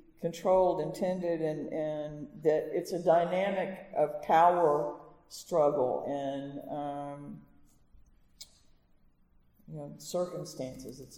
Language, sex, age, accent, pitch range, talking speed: English, female, 50-69, American, 155-185 Hz, 90 wpm